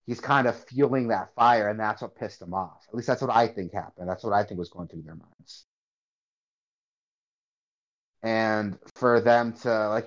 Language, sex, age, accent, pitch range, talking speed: English, male, 30-49, American, 110-140 Hz, 195 wpm